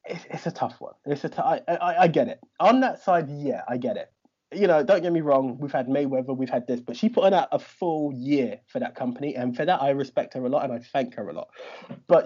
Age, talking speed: 20-39, 275 wpm